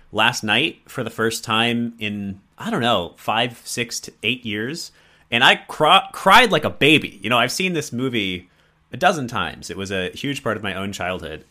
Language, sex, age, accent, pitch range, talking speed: English, male, 30-49, American, 90-110 Hz, 210 wpm